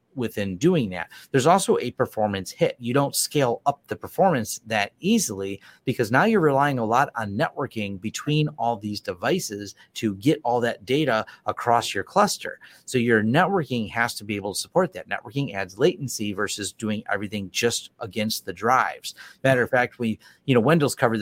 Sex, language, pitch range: male, English, 105-130 Hz